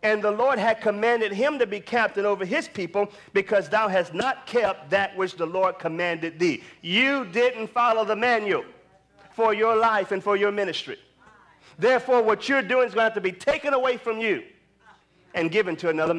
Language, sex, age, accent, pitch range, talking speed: English, male, 40-59, American, 200-275 Hz, 195 wpm